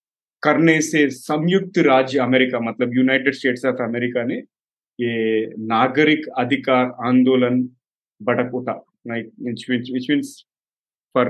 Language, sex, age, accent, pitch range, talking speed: Hindi, male, 30-49, native, 125-155 Hz, 105 wpm